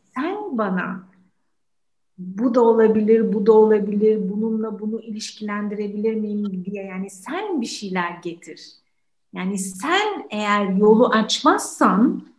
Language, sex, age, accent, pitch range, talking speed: Turkish, female, 60-79, native, 200-270 Hz, 110 wpm